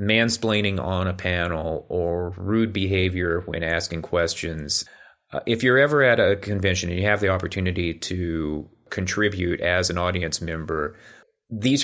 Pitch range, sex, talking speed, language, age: 90-110 Hz, male, 145 wpm, English, 30-49